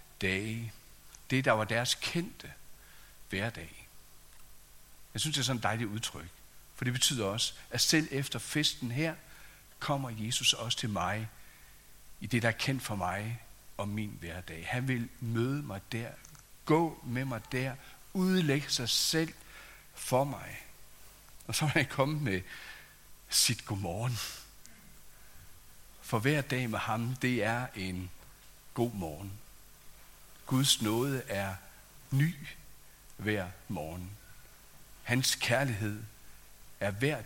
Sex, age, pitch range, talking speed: male, 60-79, 95-130 Hz, 130 wpm